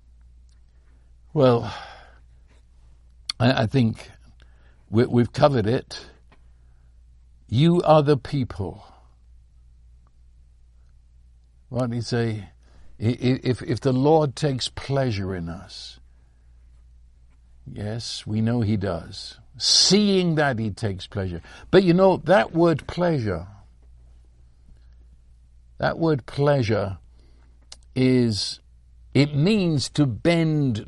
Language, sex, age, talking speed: English, male, 60-79, 85 wpm